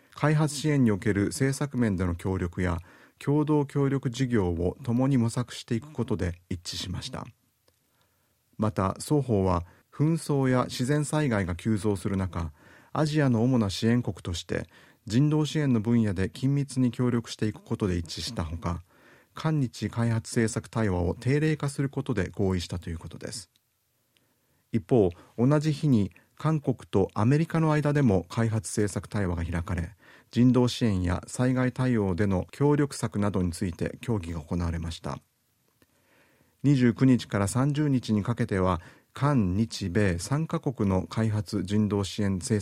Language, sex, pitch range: Japanese, male, 95-135 Hz